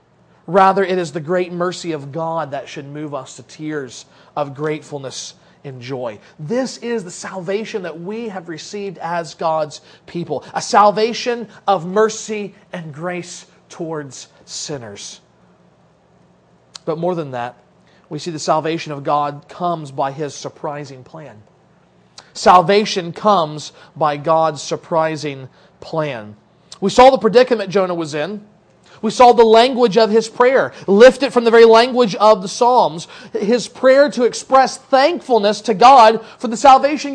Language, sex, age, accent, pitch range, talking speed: English, male, 40-59, American, 165-260 Hz, 145 wpm